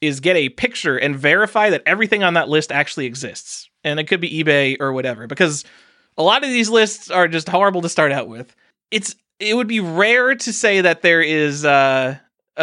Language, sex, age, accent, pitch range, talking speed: English, male, 20-39, American, 130-170 Hz, 210 wpm